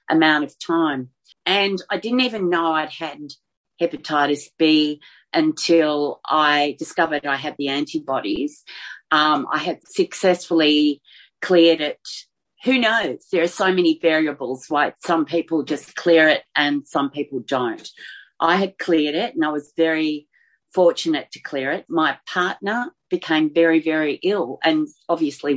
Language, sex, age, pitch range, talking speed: English, female, 40-59, 145-180 Hz, 145 wpm